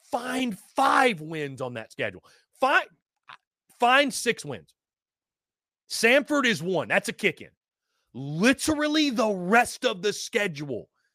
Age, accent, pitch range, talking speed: 30-49, American, 150-230 Hz, 125 wpm